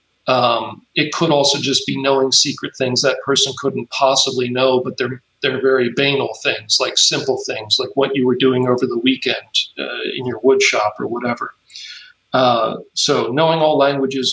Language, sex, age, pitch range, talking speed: English, male, 40-59, 130-145 Hz, 180 wpm